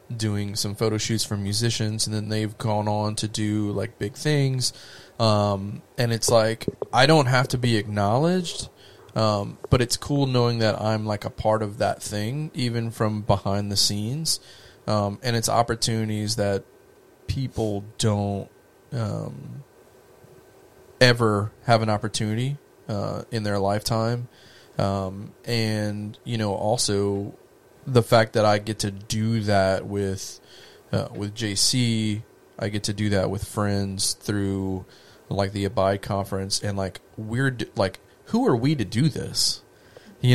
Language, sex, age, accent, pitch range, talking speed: English, male, 20-39, American, 105-125 Hz, 150 wpm